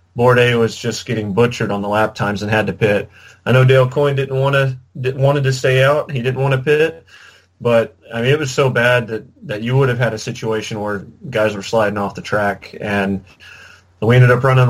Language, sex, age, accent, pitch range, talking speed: English, male, 30-49, American, 105-125 Hz, 235 wpm